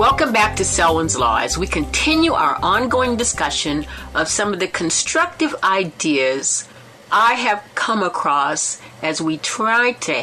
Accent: American